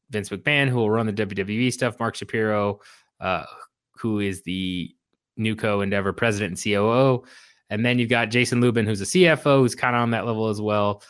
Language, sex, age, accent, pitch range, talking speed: English, male, 20-39, American, 100-125 Hz, 200 wpm